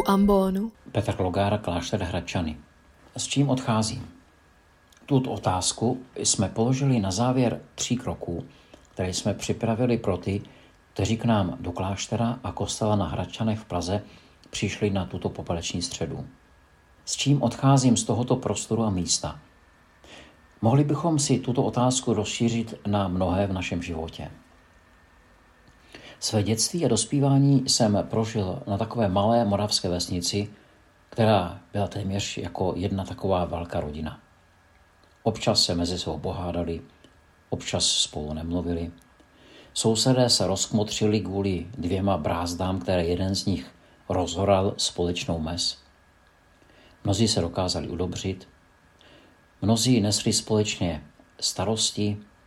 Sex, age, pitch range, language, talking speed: male, 50-69, 85-110 Hz, Czech, 120 wpm